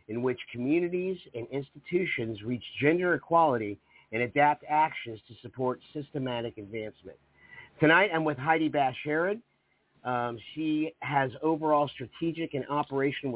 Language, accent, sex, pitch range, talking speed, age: English, American, male, 125-155 Hz, 120 wpm, 50-69